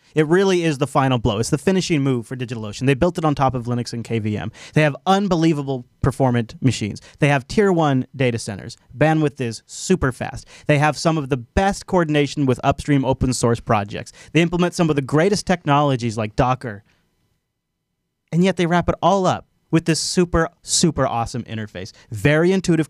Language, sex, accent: English, male, American